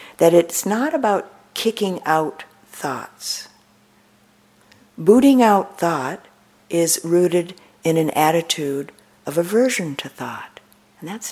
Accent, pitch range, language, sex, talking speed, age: American, 150-205 Hz, English, female, 110 wpm, 50-69